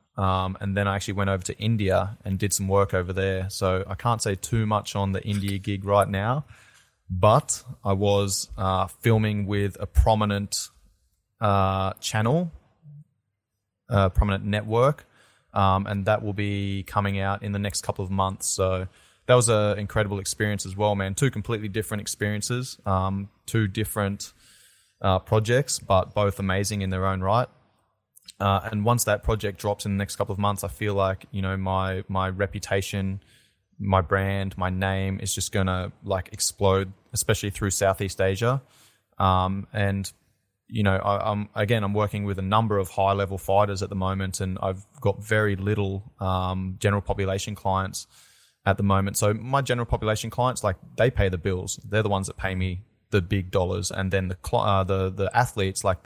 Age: 20-39